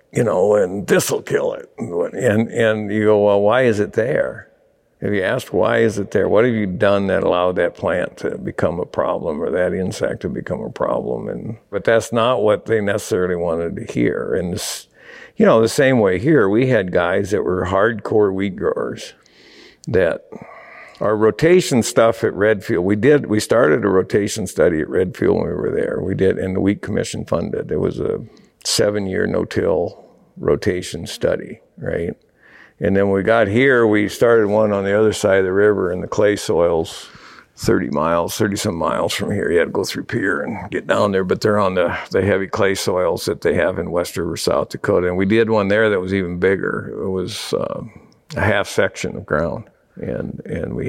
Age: 60-79